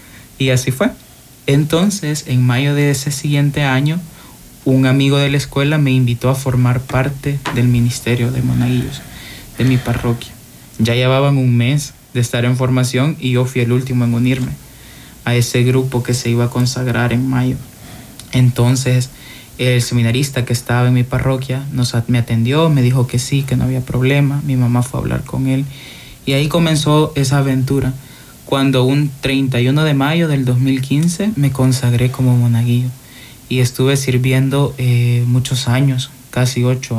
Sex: male